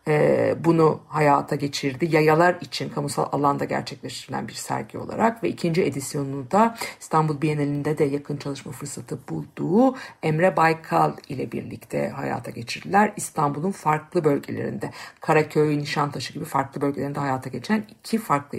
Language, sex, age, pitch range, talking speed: Turkish, female, 50-69, 145-175 Hz, 130 wpm